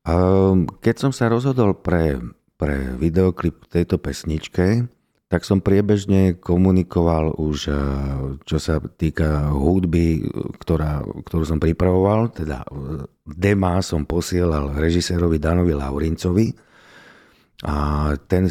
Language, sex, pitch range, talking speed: Slovak, male, 80-95 Hz, 105 wpm